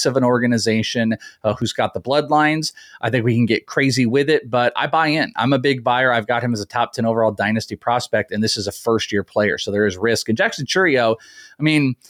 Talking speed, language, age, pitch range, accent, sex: 250 wpm, English, 30-49, 110-140 Hz, American, male